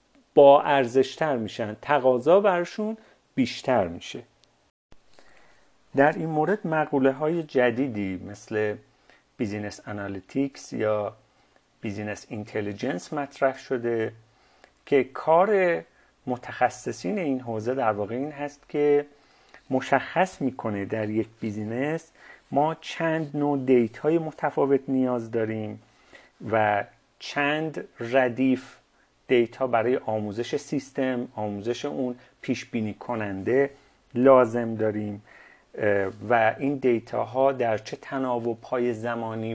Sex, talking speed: male, 100 wpm